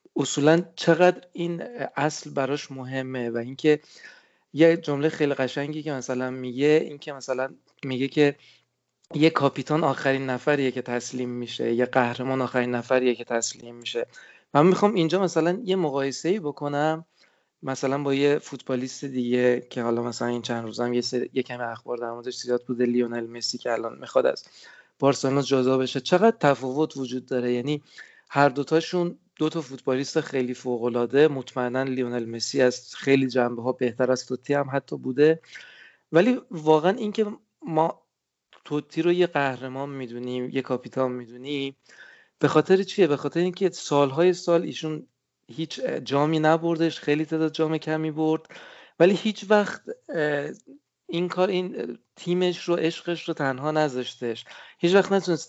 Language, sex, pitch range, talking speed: Persian, male, 130-160 Hz, 145 wpm